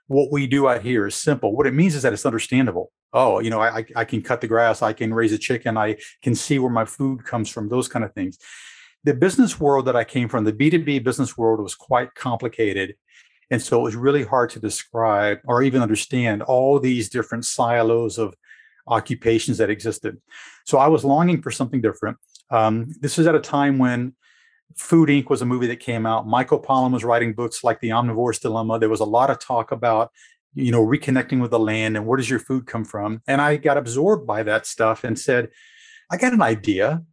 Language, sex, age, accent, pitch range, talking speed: English, male, 40-59, American, 110-140 Hz, 220 wpm